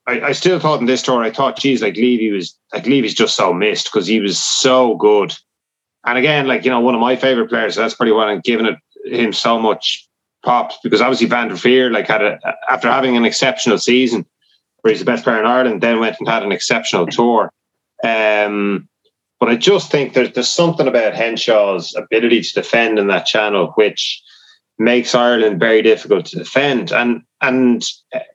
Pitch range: 110-140 Hz